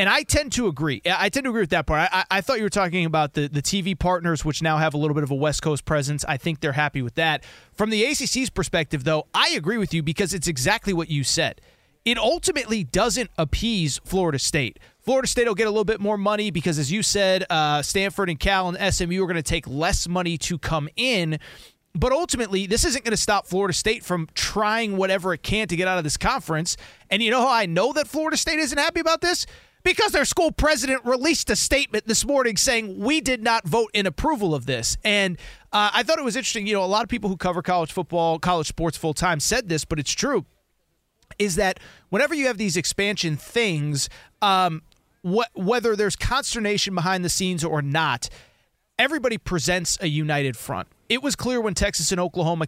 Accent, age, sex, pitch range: American, 30-49, male, 160-220 Hz